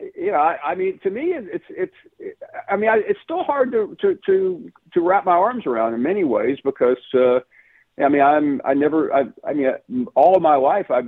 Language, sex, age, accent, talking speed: English, male, 50-69, American, 235 wpm